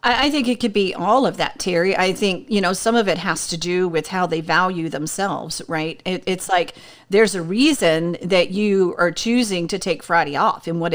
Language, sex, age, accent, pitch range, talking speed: English, female, 40-59, American, 175-235 Hz, 225 wpm